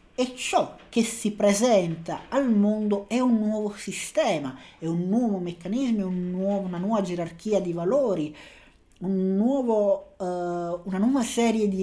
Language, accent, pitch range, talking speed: Italian, native, 170-210 Hz, 150 wpm